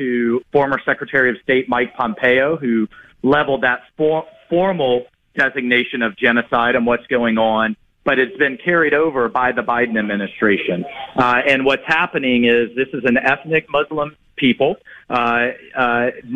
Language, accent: English, American